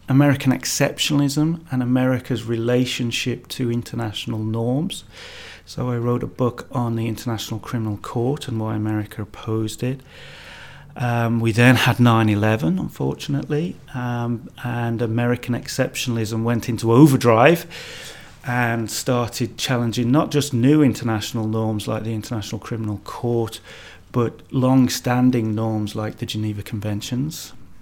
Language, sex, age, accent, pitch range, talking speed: English, male, 30-49, British, 110-130 Hz, 120 wpm